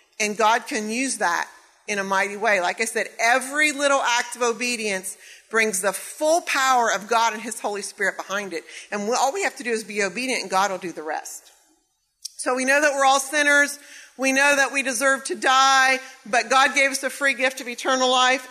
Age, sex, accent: 40-59, female, American